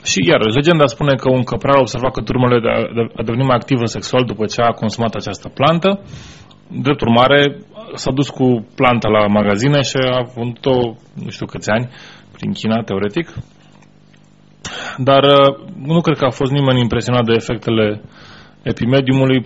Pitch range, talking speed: 110-135 Hz, 155 wpm